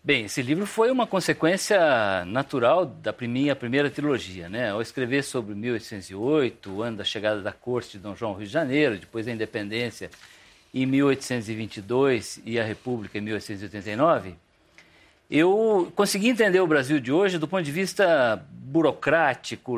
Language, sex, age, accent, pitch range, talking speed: Portuguese, male, 50-69, Brazilian, 115-175 Hz, 155 wpm